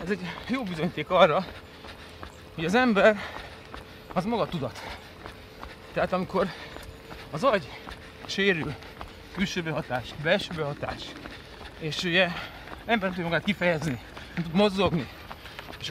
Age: 30-49